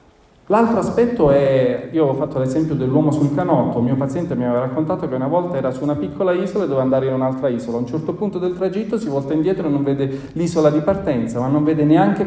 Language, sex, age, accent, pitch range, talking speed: Italian, male, 40-59, native, 130-175 Hz, 240 wpm